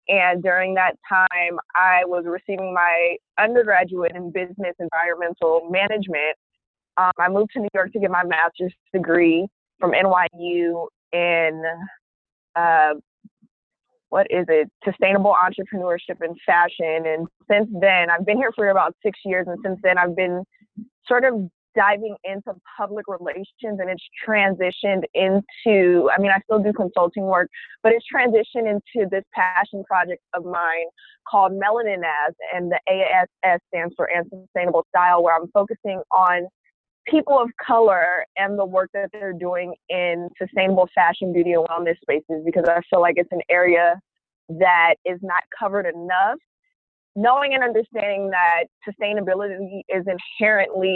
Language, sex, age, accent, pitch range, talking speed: English, female, 20-39, American, 175-205 Hz, 145 wpm